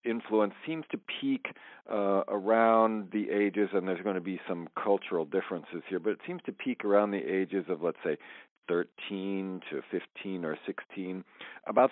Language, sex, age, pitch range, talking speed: English, male, 50-69, 90-110 Hz, 170 wpm